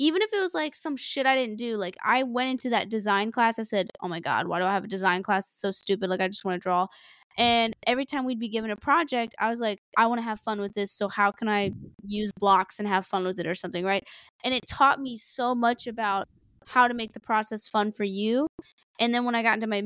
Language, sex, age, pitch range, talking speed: English, female, 10-29, 200-240 Hz, 280 wpm